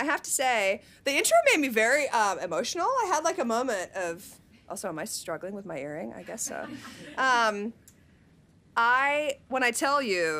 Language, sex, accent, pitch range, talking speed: English, female, American, 185-240 Hz, 190 wpm